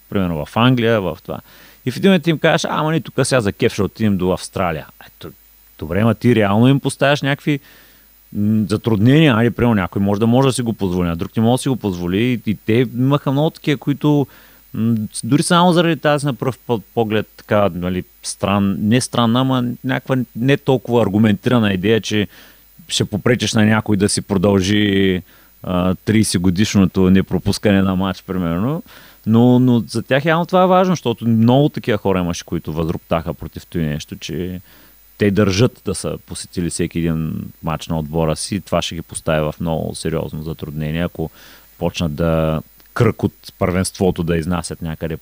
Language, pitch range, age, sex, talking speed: Bulgarian, 90-120 Hz, 30-49, male, 175 wpm